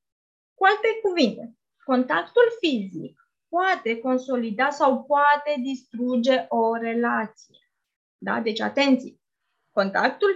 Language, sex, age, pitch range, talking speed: Romanian, female, 20-39, 235-305 Hz, 95 wpm